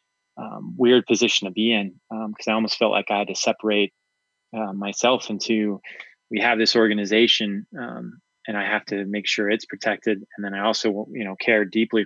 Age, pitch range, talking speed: 20-39, 100-115 Hz, 200 wpm